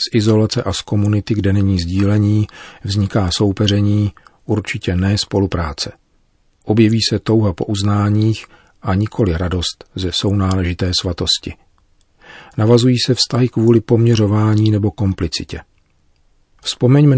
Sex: male